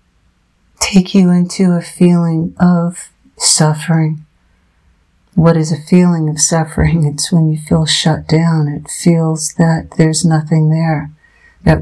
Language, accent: English, American